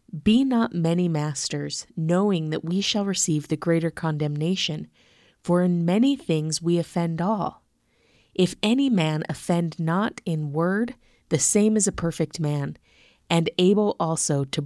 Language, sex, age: English, female, 30-49